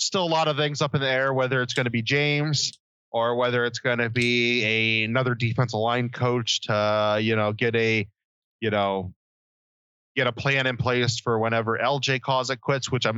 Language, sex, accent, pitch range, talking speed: English, male, American, 110-140 Hz, 210 wpm